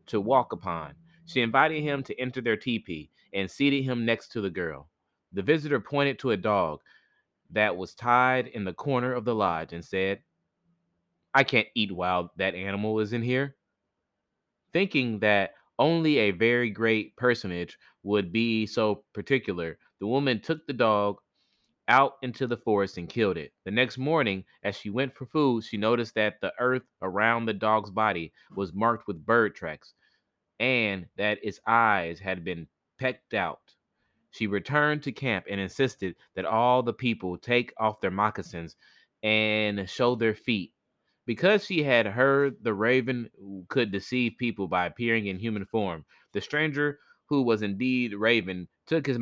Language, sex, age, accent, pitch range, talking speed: English, male, 30-49, American, 100-130 Hz, 165 wpm